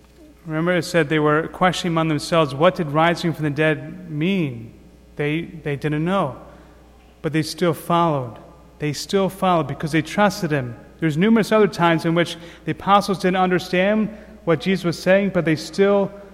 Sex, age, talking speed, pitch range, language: male, 30-49, 175 wpm, 145-180 Hz, English